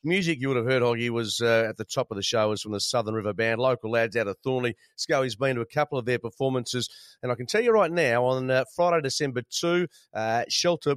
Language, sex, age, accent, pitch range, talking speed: English, male, 40-59, Australian, 125-155 Hz, 265 wpm